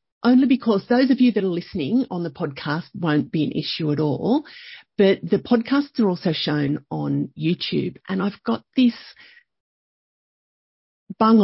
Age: 40-59